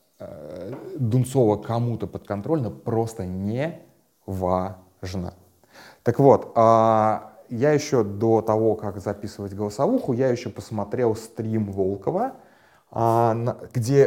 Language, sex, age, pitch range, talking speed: Russian, male, 20-39, 100-125 Hz, 90 wpm